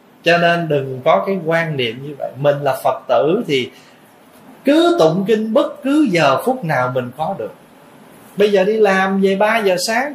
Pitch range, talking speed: 165-235 Hz, 195 wpm